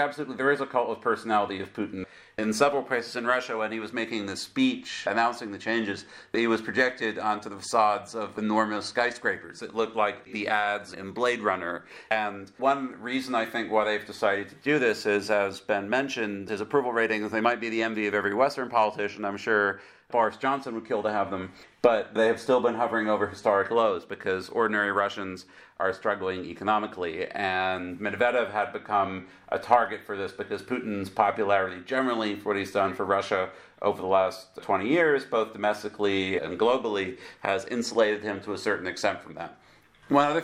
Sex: male